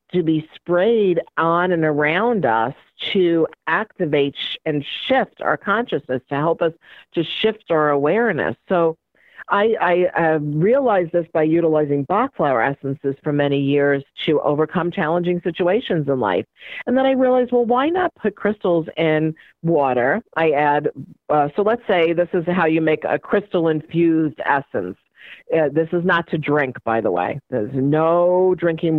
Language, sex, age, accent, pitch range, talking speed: English, female, 50-69, American, 145-180 Hz, 160 wpm